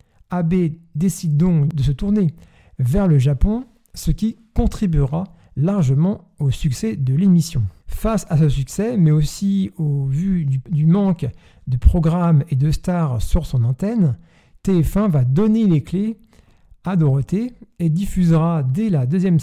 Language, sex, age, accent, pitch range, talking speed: French, male, 50-69, French, 140-180 Hz, 150 wpm